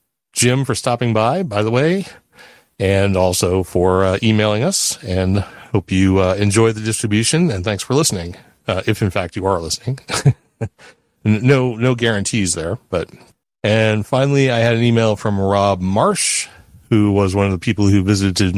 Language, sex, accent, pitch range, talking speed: English, male, American, 95-120 Hz, 170 wpm